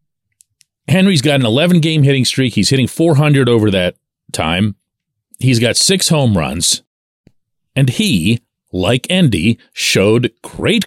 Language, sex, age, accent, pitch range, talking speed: English, male, 40-59, American, 120-175 Hz, 125 wpm